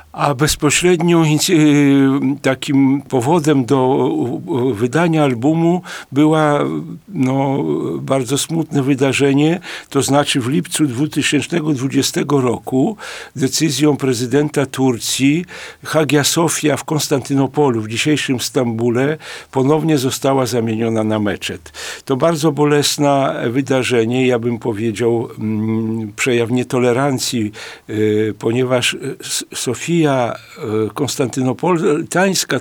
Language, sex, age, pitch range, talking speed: Polish, male, 50-69, 125-150 Hz, 85 wpm